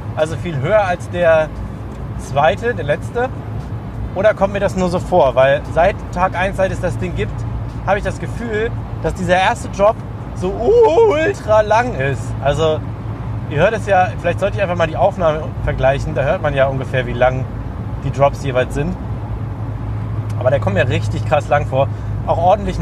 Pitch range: 105-150 Hz